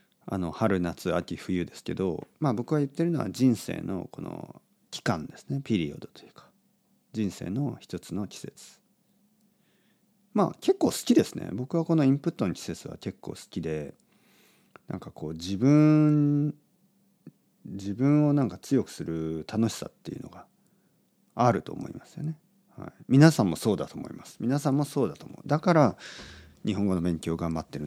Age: 40-59